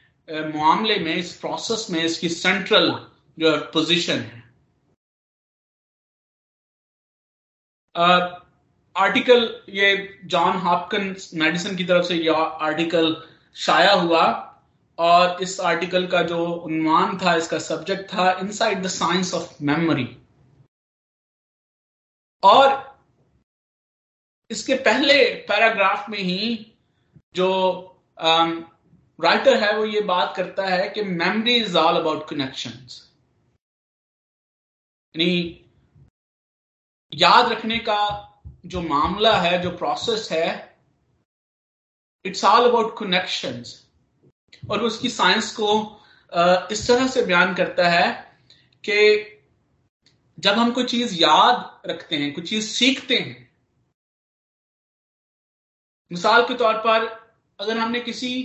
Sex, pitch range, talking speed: male, 165-220 Hz, 105 wpm